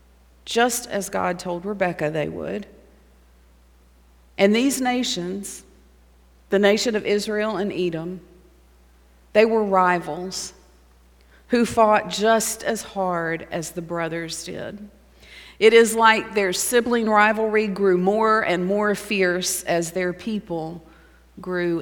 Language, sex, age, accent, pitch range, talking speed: English, female, 40-59, American, 160-220 Hz, 120 wpm